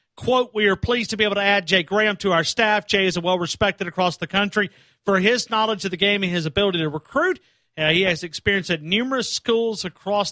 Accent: American